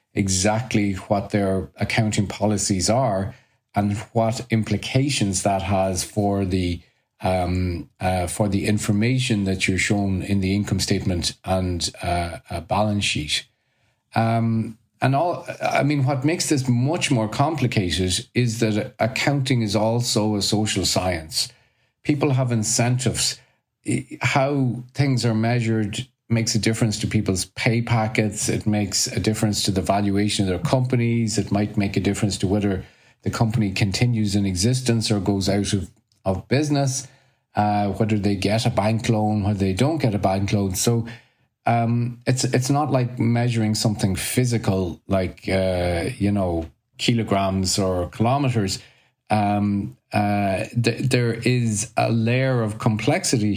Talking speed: 145 wpm